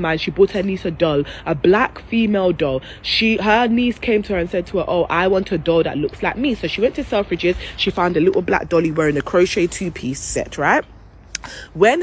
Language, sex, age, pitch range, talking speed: English, female, 20-39, 185-245 Hz, 235 wpm